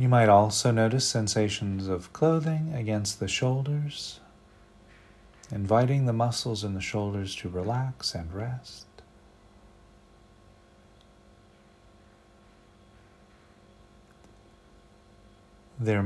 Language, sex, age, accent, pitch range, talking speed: English, male, 40-59, American, 90-115 Hz, 80 wpm